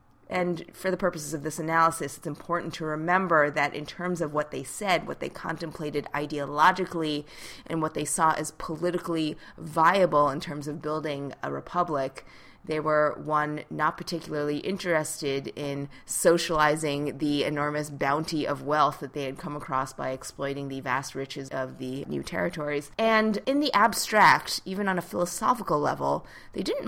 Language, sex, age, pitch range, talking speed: English, female, 20-39, 145-175 Hz, 165 wpm